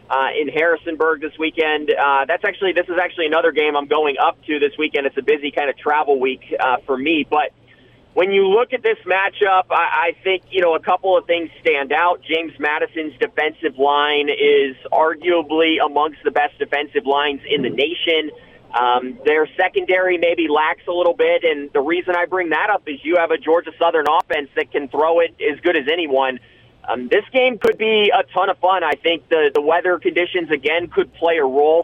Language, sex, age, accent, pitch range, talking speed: English, male, 30-49, American, 150-190 Hz, 210 wpm